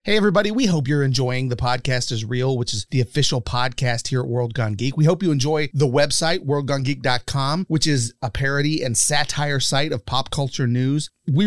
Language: English